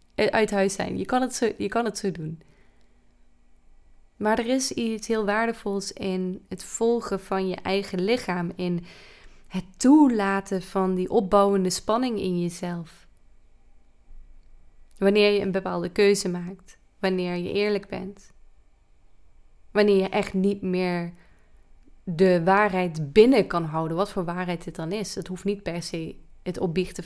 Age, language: 20-39, Dutch